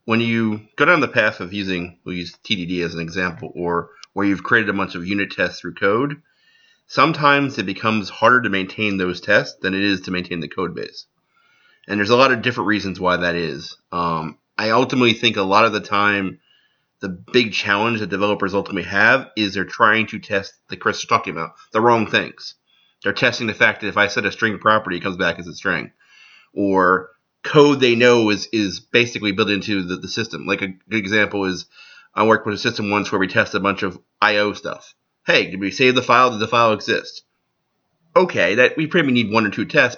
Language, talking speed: English, 220 wpm